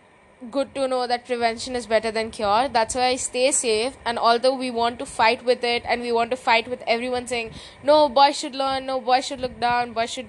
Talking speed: 240 wpm